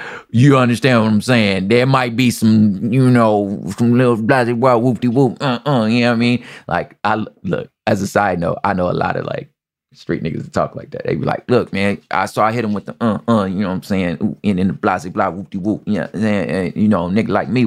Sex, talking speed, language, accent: male, 260 wpm, English, American